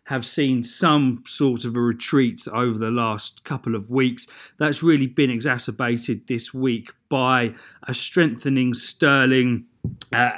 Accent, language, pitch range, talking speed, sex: British, English, 120-145 Hz, 140 wpm, male